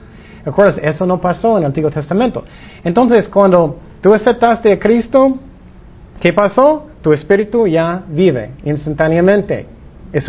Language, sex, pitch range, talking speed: Spanish, male, 130-185 Hz, 130 wpm